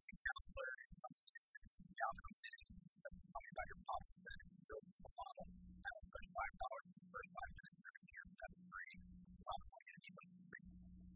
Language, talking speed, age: English, 100 wpm, 40-59